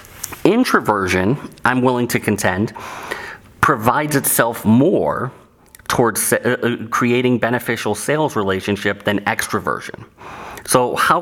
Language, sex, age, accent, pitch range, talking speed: English, male, 30-49, American, 105-125 Hz, 90 wpm